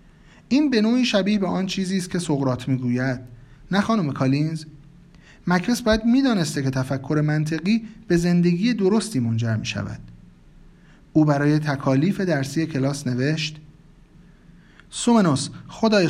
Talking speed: 125 wpm